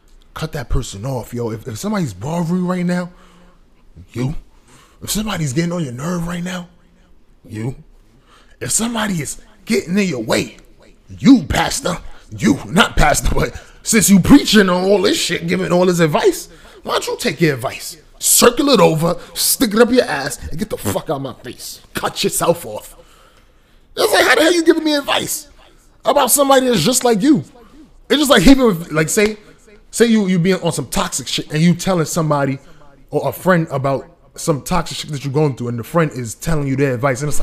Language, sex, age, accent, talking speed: English, male, 20-39, American, 195 wpm